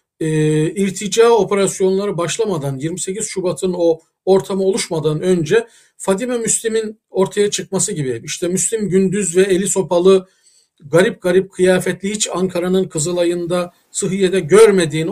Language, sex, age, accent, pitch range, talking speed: Turkish, male, 50-69, native, 170-205 Hz, 115 wpm